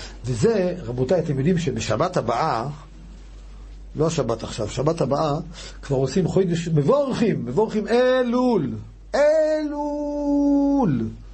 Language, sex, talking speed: Hebrew, male, 95 wpm